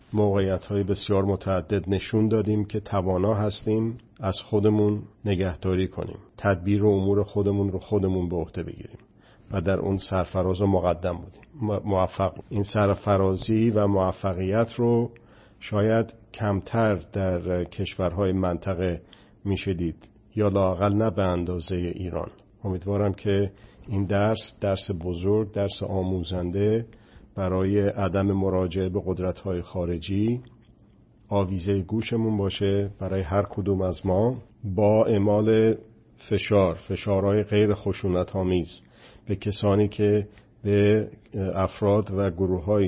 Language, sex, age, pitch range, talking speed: Persian, male, 50-69, 95-105 Hz, 120 wpm